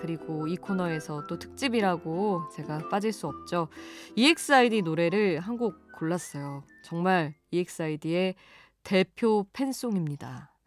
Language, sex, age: Korean, female, 20-39